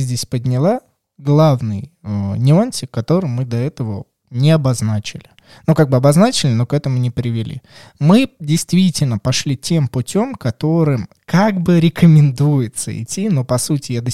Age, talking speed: 20-39, 150 wpm